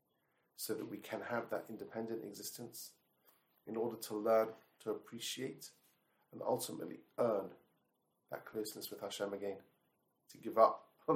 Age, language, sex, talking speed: 30-49, English, male, 140 wpm